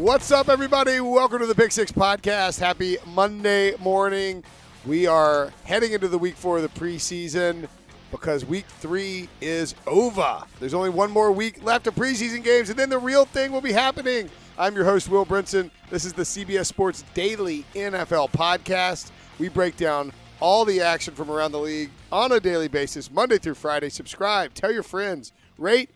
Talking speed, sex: 185 wpm, male